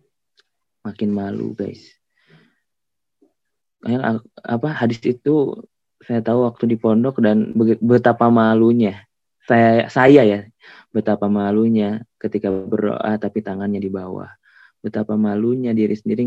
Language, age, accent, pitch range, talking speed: Indonesian, 20-39, native, 105-120 Hz, 110 wpm